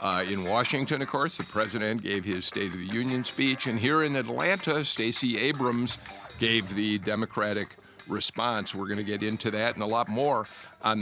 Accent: American